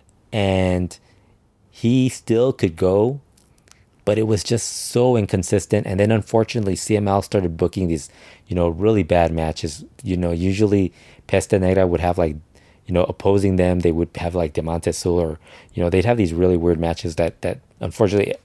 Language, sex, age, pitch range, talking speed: English, male, 20-39, 90-105 Hz, 170 wpm